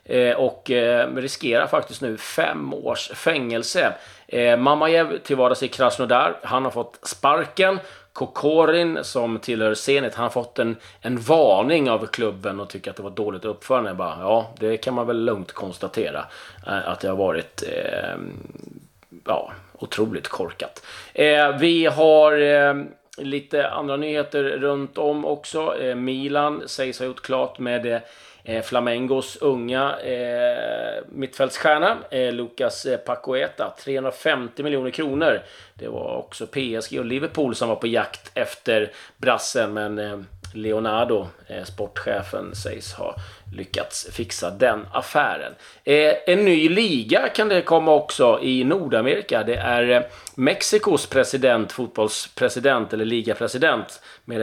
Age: 30-49